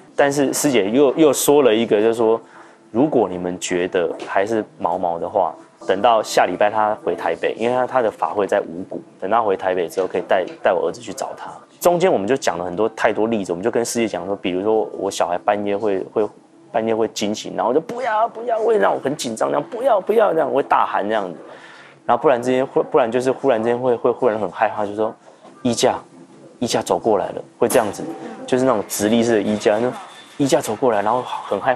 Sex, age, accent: male, 20-39, native